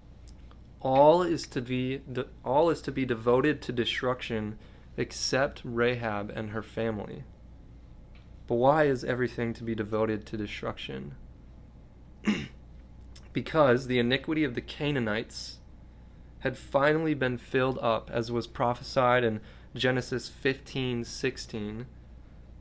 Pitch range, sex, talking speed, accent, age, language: 110-130 Hz, male, 115 wpm, American, 20-39, English